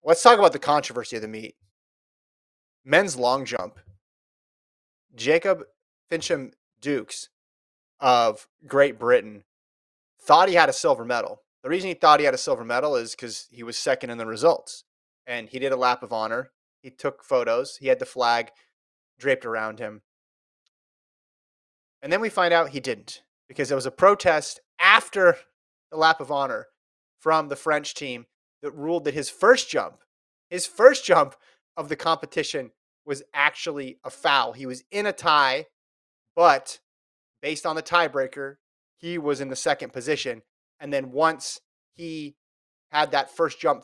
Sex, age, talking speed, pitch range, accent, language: male, 30-49, 160 wpm, 120-165 Hz, American, English